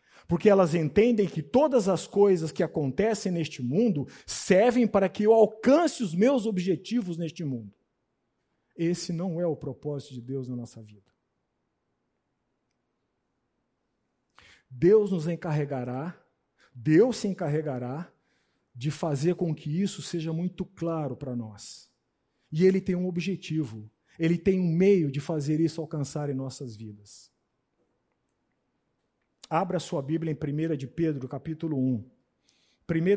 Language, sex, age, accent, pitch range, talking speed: Portuguese, male, 50-69, Brazilian, 140-180 Hz, 130 wpm